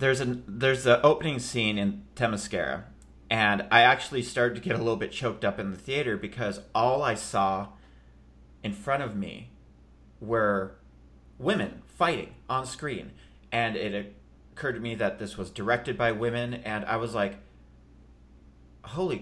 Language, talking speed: English, 160 wpm